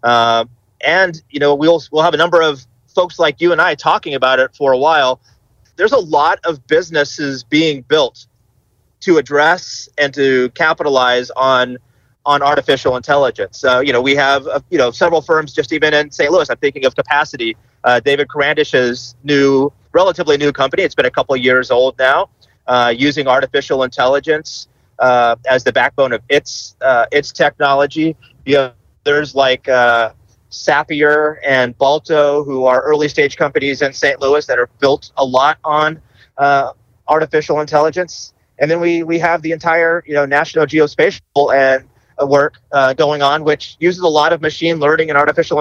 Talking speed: 180 wpm